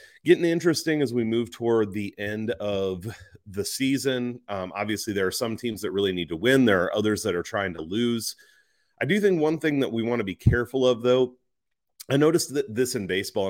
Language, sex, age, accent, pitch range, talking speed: English, male, 30-49, American, 100-135 Hz, 220 wpm